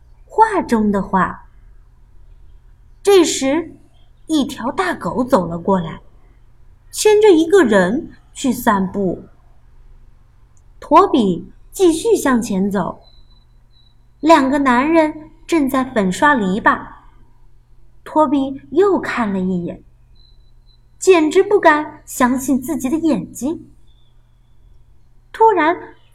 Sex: female